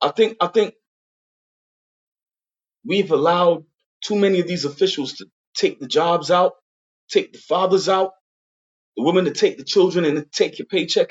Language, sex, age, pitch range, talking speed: English, male, 20-39, 155-215 Hz, 165 wpm